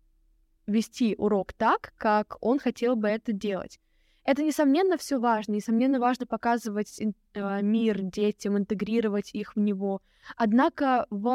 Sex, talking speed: female, 125 wpm